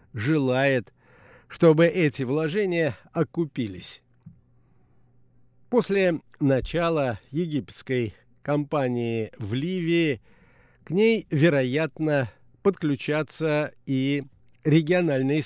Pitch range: 125-165 Hz